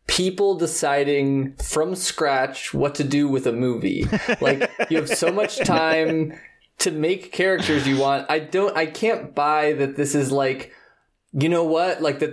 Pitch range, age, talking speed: 135-165 Hz, 20-39, 170 wpm